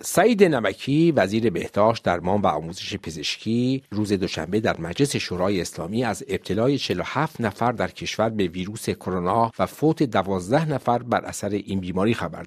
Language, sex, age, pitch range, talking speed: Persian, male, 50-69, 95-140 Hz, 155 wpm